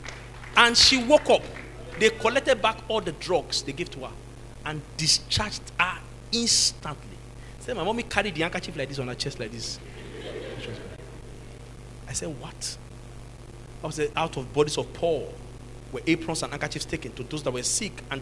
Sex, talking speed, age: male, 170 wpm, 40-59